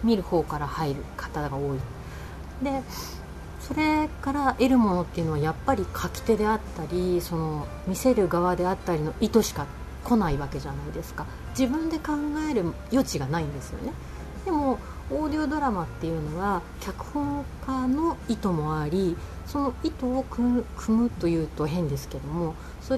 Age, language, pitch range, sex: 30-49, Japanese, 155-260 Hz, female